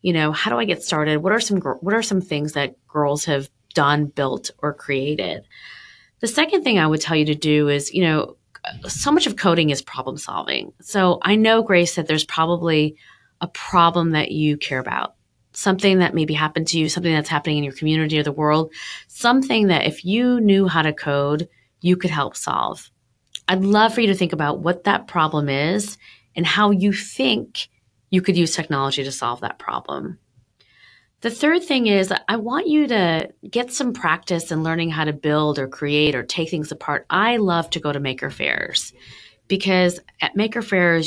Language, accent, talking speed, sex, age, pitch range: English, American, 200 wpm, female, 30-49, 150-190 Hz